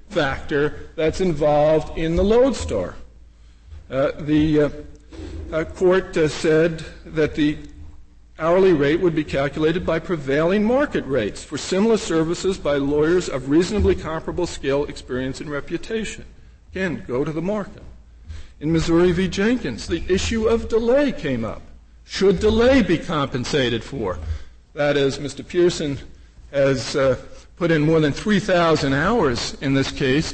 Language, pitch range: English, 130-190 Hz